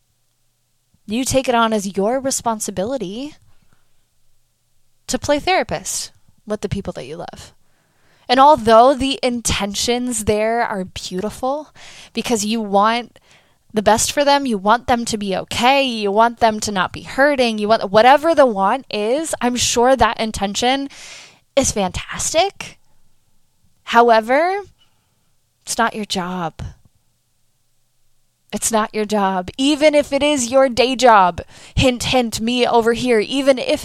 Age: 10-29